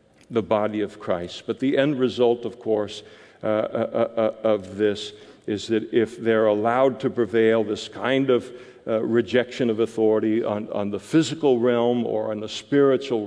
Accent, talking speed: American, 170 wpm